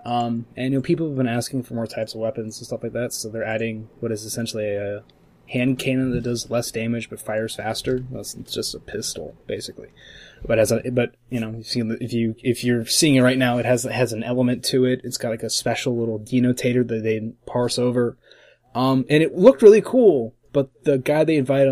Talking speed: 235 wpm